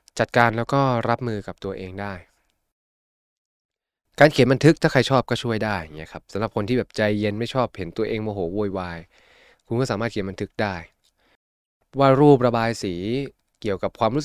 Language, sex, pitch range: Thai, male, 100-125 Hz